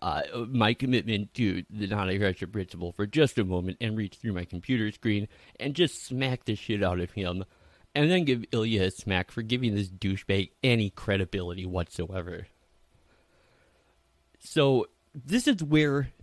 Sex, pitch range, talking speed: male, 100-145 Hz, 160 wpm